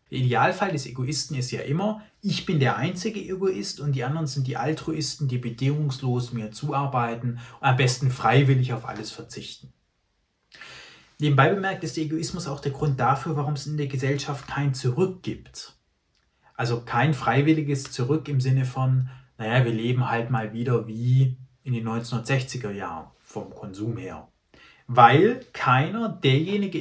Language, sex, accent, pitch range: German, male, German, 125-155 Hz